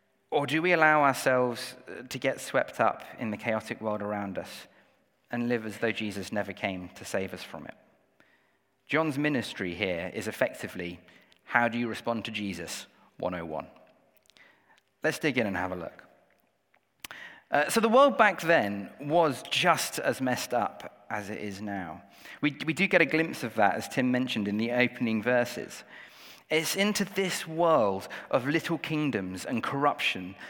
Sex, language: male, English